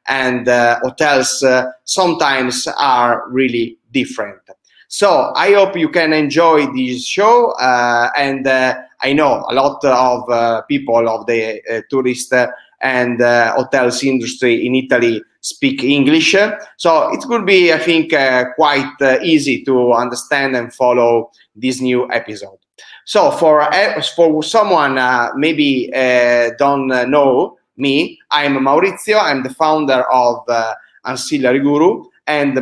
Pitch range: 125-160 Hz